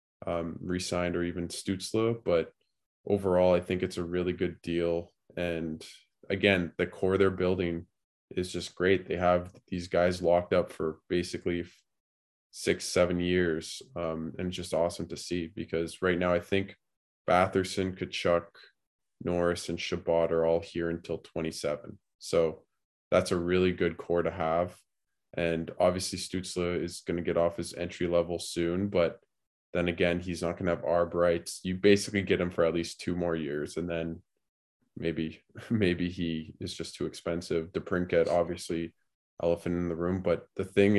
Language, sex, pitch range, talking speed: English, male, 85-95 Hz, 165 wpm